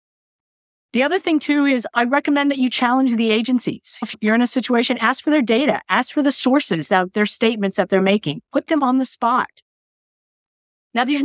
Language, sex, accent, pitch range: English, female, American, 185-245 Hz